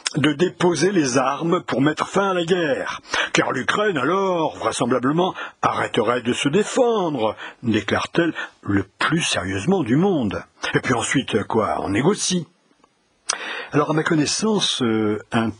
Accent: French